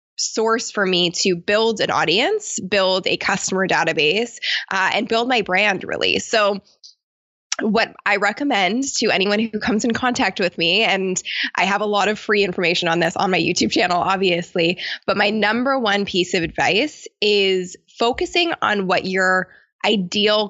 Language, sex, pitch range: English, female, 180-225 Hz